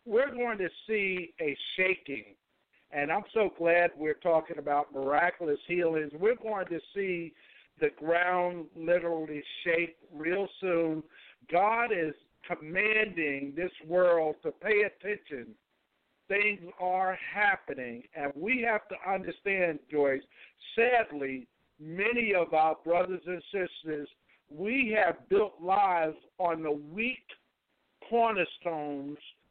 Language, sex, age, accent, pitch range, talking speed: English, male, 50-69, American, 160-200 Hz, 115 wpm